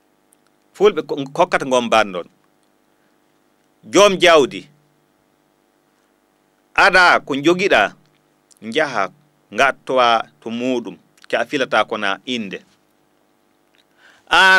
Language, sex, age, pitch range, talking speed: English, male, 40-59, 140-180 Hz, 70 wpm